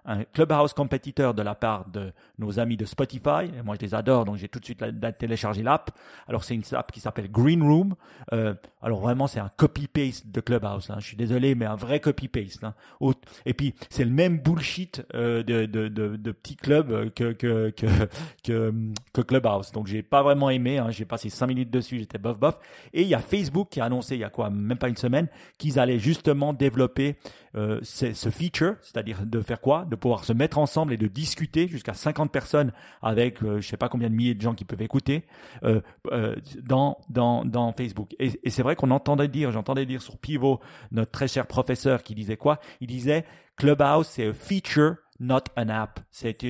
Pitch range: 115-145 Hz